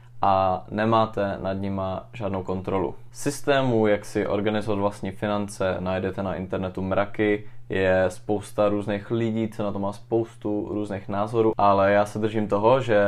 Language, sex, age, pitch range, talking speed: Czech, male, 20-39, 100-115 Hz, 150 wpm